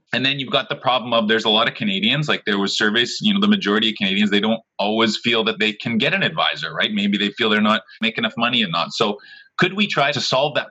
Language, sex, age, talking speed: English, male, 30-49, 280 wpm